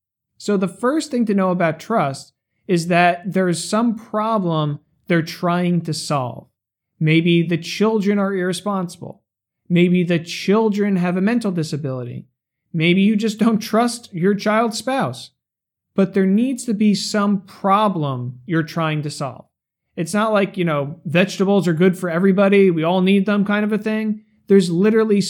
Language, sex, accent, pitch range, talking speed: English, male, American, 160-200 Hz, 165 wpm